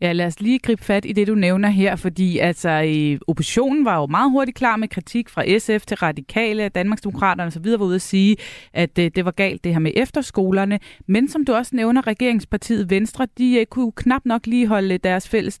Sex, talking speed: female, 210 wpm